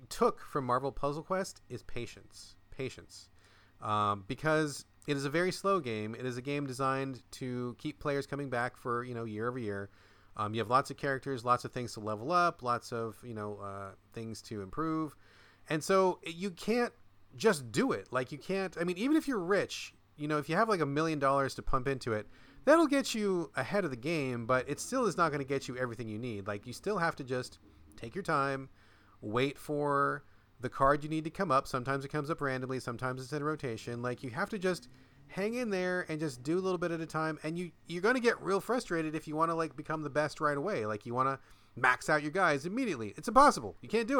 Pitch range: 120-165 Hz